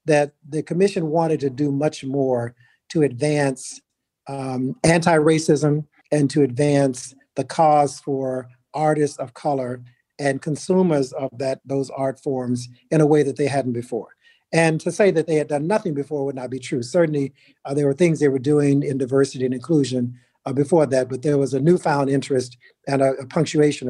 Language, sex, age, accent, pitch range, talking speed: English, male, 50-69, American, 130-150 Hz, 185 wpm